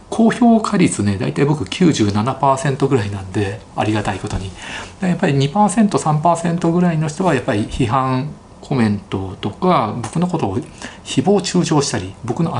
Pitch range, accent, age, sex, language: 105-155 Hz, native, 40-59, male, Japanese